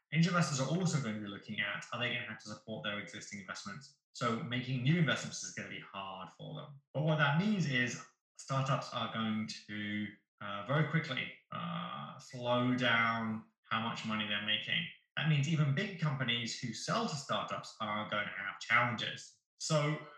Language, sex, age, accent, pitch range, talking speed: English, male, 20-39, British, 110-140 Hz, 190 wpm